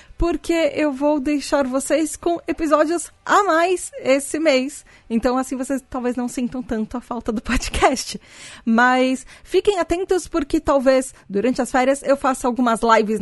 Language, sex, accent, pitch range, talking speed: Portuguese, female, Brazilian, 230-310 Hz, 155 wpm